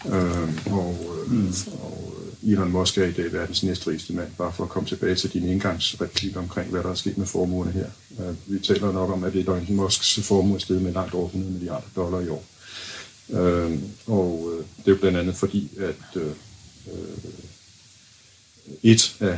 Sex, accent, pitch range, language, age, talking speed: male, native, 90-100 Hz, Danish, 60-79, 190 wpm